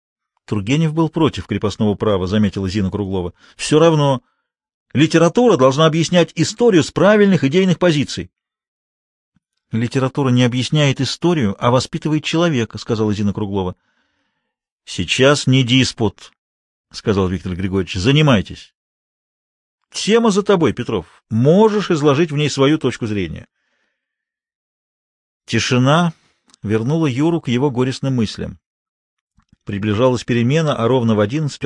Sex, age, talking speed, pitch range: male, 40-59, 110 wpm, 115-175 Hz